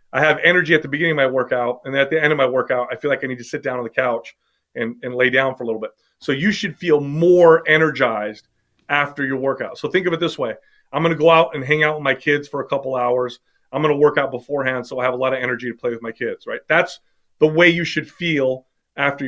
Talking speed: 285 wpm